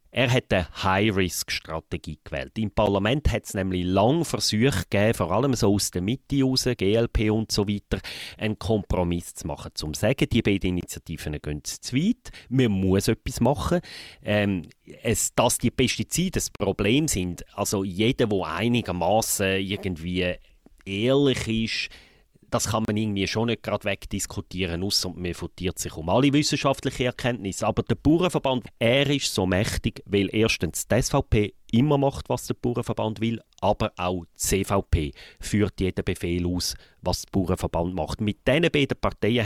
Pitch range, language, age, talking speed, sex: 95-120 Hz, German, 30-49, 155 wpm, male